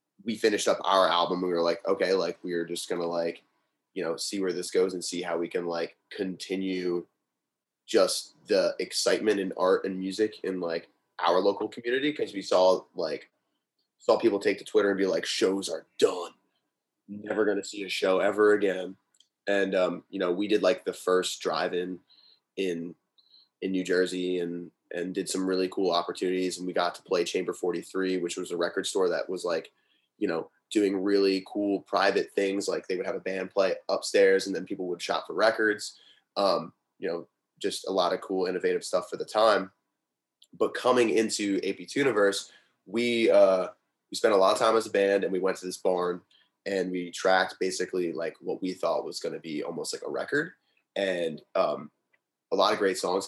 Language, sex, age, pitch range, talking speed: English, male, 20-39, 90-105 Hz, 205 wpm